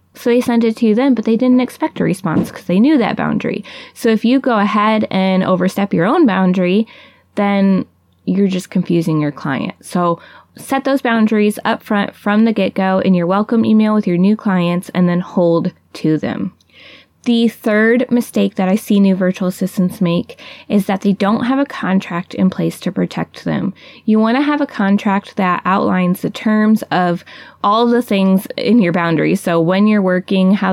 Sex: female